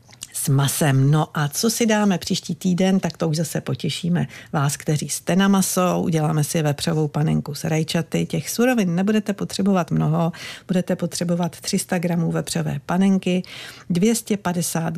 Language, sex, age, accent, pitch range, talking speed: Czech, female, 50-69, native, 150-190 Hz, 145 wpm